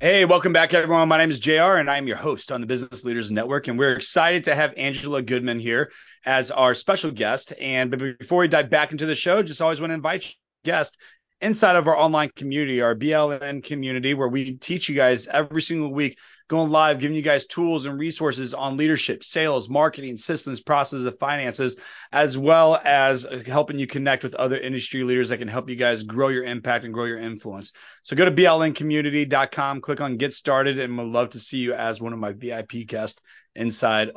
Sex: male